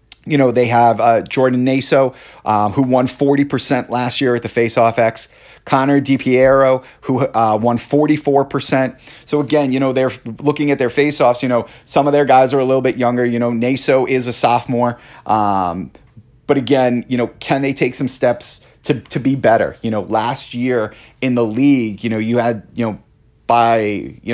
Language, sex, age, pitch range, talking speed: English, male, 30-49, 115-130 Hz, 190 wpm